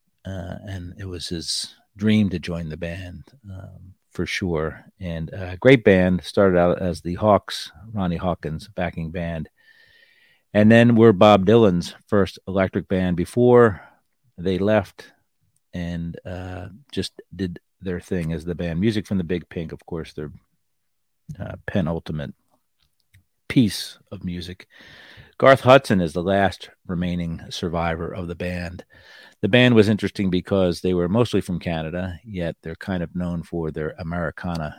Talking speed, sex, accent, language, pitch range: 150 wpm, male, American, English, 85-100 Hz